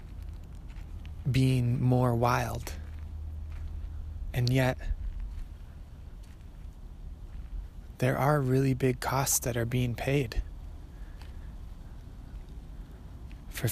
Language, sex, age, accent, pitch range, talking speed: English, male, 20-39, American, 80-125 Hz, 65 wpm